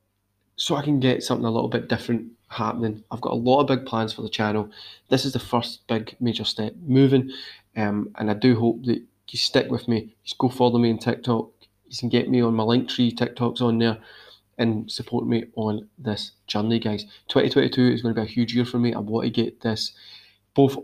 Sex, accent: male, British